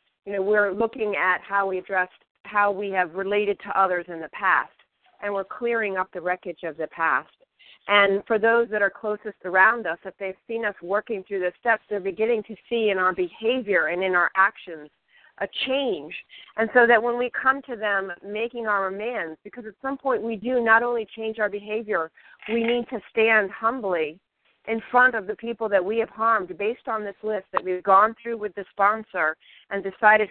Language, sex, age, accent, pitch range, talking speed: English, female, 40-59, American, 190-225 Hz, 205 wpm